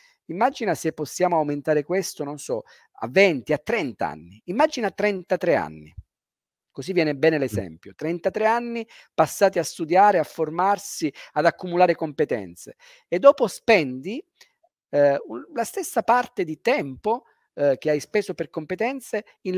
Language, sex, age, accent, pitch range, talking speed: Italian, male, 40-59, native, 140-210 Hz, 140 wpm